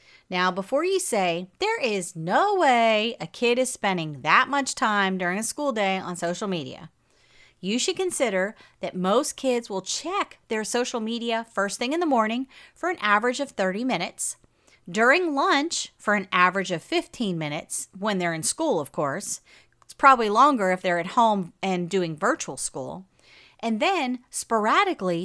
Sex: female